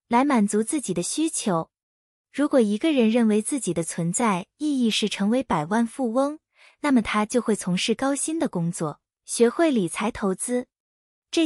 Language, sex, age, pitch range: Chinese, female, 20-39, 190-280 Hz